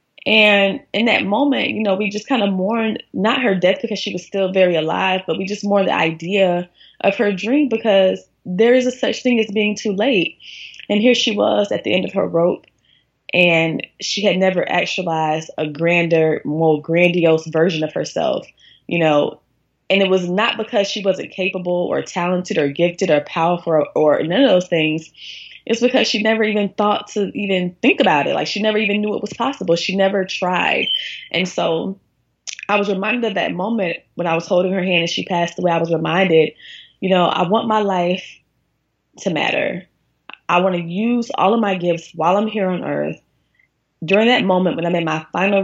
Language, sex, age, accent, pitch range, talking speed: English, female, 20-39, American, 165-205 Hz, 205 wpm